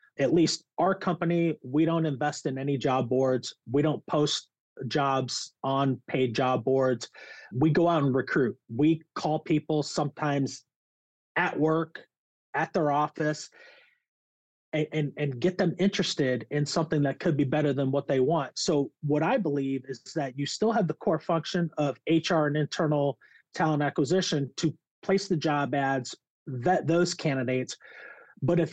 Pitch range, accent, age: 135-170 Hz, American, 30-49